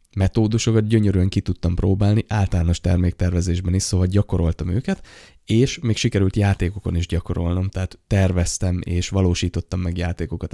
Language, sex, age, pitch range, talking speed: Hungarian, male, 20-39, 85-100 Hz, 130 wpm